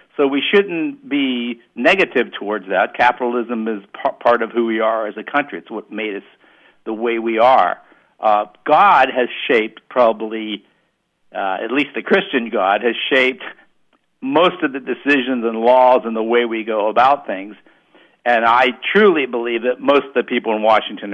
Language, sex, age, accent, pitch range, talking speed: English, male, 60-79, American, 110-135 Hz, 175 wpm